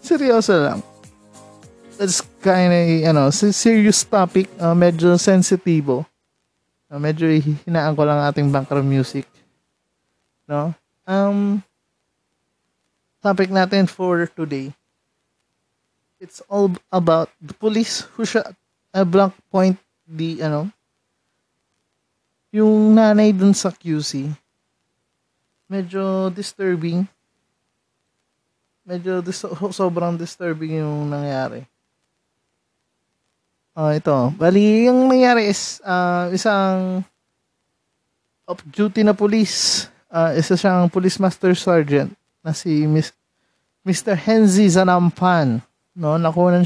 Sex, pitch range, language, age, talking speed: male, 145-190 Hz, Filipino, 20-39, 105 wpm